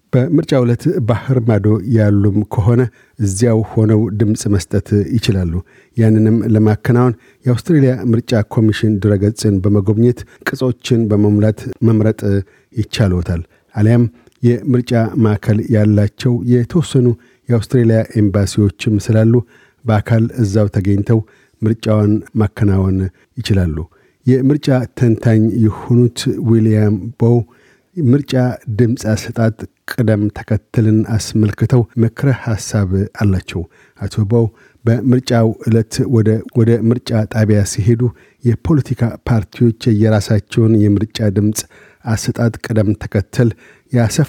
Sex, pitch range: male, 105-120 Hz